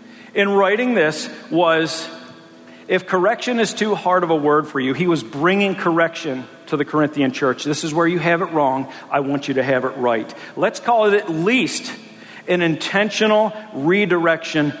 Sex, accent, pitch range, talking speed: male, American, 160-215 Hz, 180 wpm